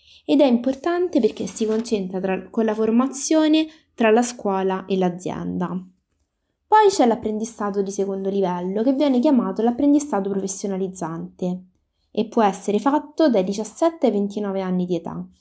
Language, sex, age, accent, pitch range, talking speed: Italian, female, 20-39, native, 190-245 Hz, 140 wpm